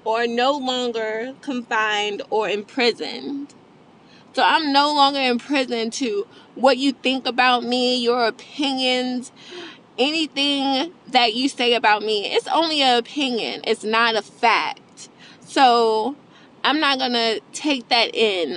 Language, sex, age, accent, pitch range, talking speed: English, female, 20-39, American, 220-275 Hz, 135 wpm